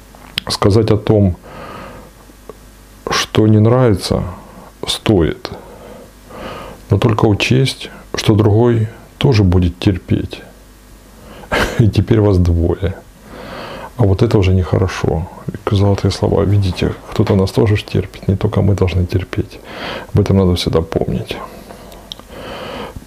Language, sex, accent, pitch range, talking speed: Russian, male, native, 90-110 Hz, 105 wpm